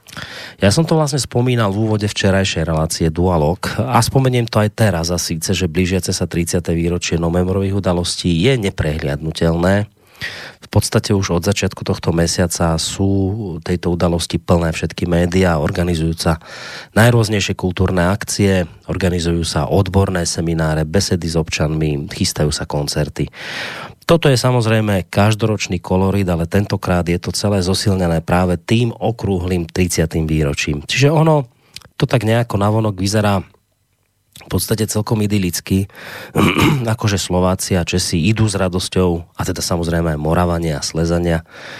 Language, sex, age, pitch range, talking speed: Slovak, male, 30-49, 85-105 Hz, 135 wpm